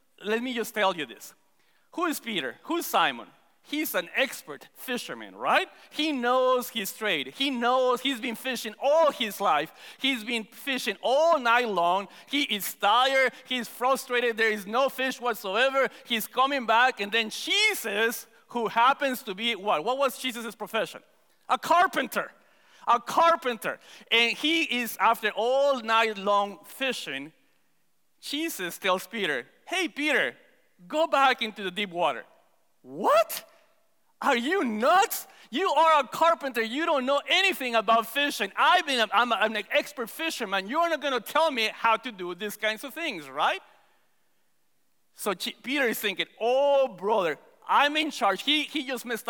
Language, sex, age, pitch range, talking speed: English, male, 40-59, 220-295 Hz, 160 wpm